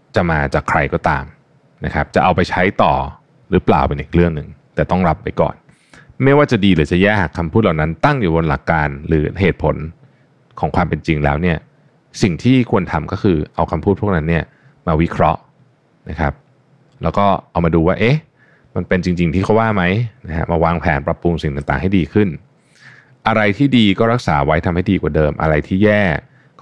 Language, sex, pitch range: Thai, male, 80-115 Hz